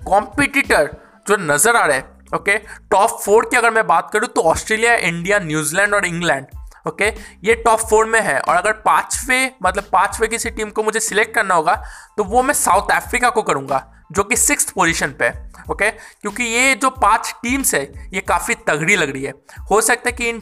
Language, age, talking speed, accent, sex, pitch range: Hindi, 20-39, 205 wpm, native, male, 175-230 Hz